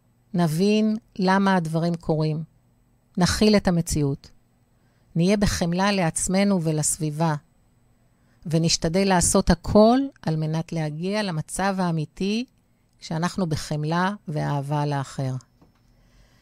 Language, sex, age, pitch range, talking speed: Hebrew, female, 50-69, 150-180 Hz, 85 wpm